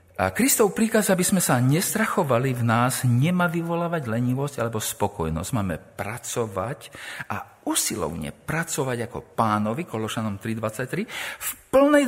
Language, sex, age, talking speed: Slovak, male, 50-69, 125 wpm